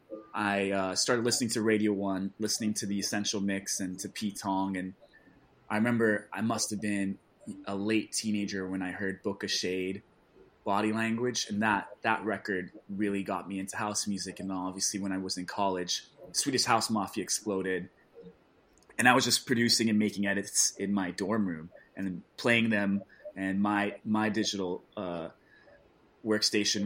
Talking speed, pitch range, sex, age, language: 170 wpm, 95-110 Hz, male, 20-39, English